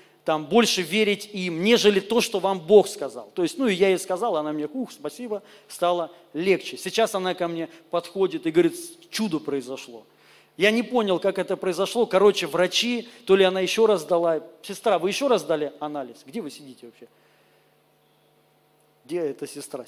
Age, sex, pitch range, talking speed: 40-59, male, 175-235 Hz, 180 wpm